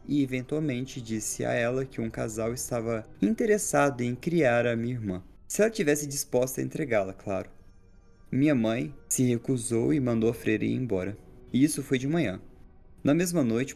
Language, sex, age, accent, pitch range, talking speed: Portuguese, male, 20-39, Brazilian, 110-140 Hz, 175 wpm